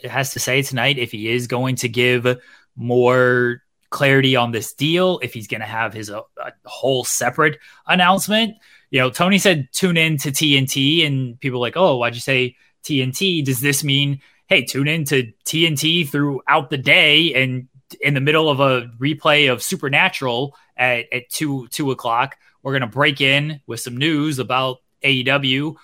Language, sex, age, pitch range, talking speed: English, male, 20-39, 125-150 Hz, 185 wpm